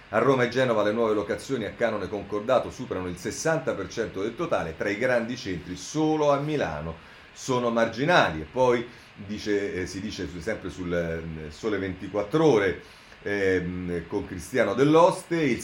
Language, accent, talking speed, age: Italian, native, 155 wpm, 40-59